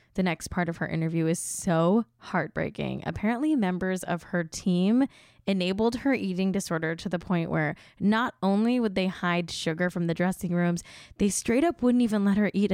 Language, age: English, 10-29